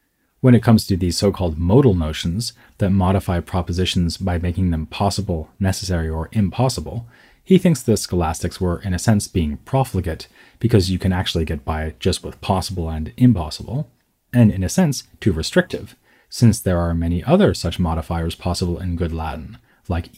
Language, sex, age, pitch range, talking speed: English, male, 30-49, 85-115 Hz, 170 wpm